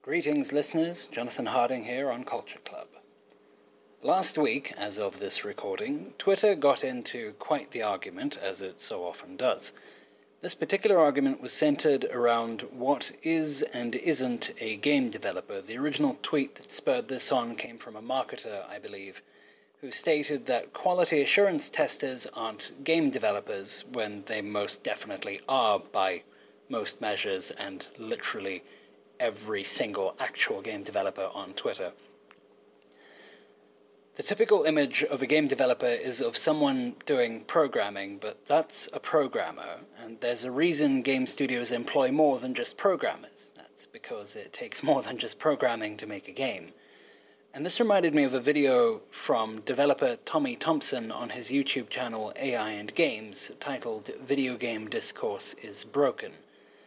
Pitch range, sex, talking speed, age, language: 120-200 Hz, male, 150 wpm, 30-49, English